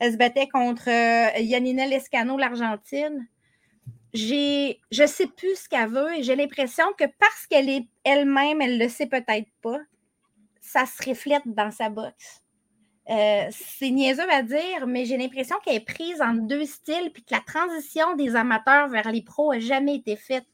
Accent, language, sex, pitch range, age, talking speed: Canadian, French, female, 230-300 Hz, 20-39, 180 wpm